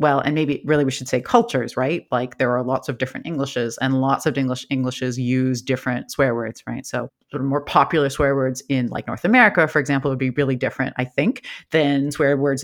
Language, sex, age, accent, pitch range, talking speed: English, female, 30-49, American, 130-160 Hz, 230 wpm